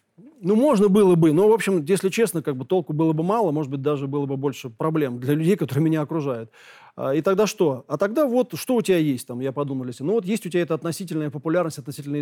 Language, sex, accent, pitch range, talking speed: Russian, male, native, 145-195 Hz, 250 wpm